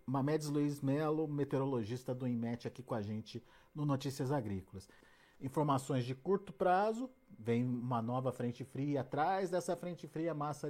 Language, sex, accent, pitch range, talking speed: Portuguese, male, Brazilian, 135-185 Hz, 150 wpm